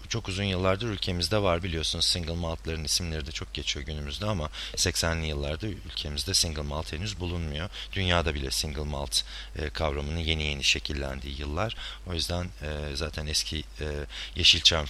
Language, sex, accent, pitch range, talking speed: Turkish, male, native, 75-95 Hz, 140 wpm